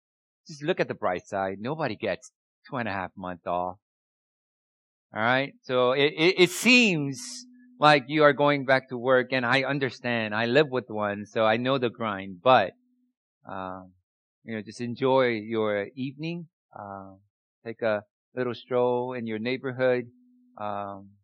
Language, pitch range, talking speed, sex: English, 105-155 Hz, 165 wpm, male